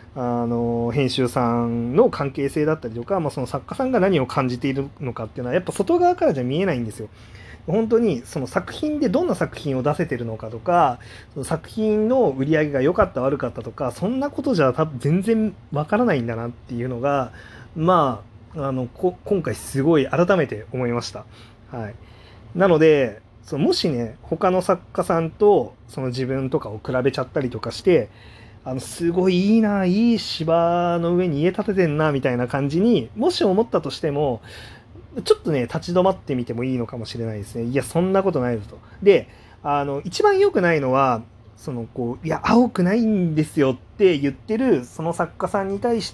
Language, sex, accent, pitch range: Japanese, male, native, 120-180 Hz